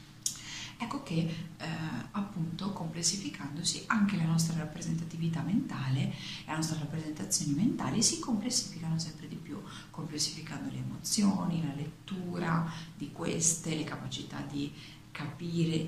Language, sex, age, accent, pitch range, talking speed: Italian, female, 50-69, native, 140-170 Hz, 115 wpm